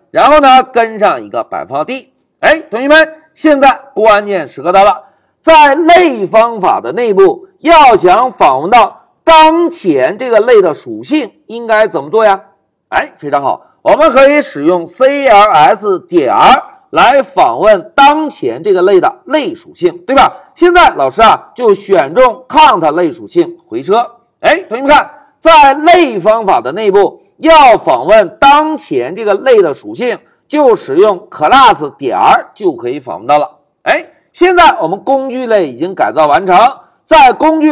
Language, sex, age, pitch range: Chinese, male, 50-69, 245-345 Hz